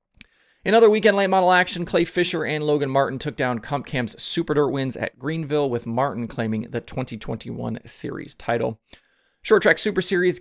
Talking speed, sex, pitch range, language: 180 wpm, male, 115-150 Hz, English